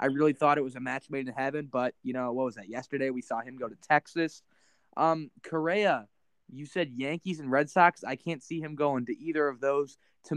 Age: 20-39